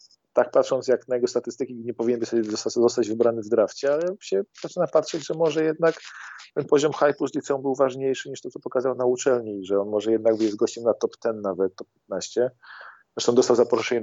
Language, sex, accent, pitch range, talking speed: Polish, male, native, 110-125 Hz, 200 wpm